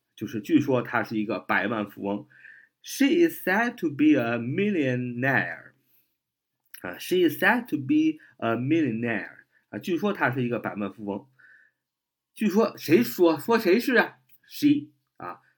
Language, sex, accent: Chinese, male, native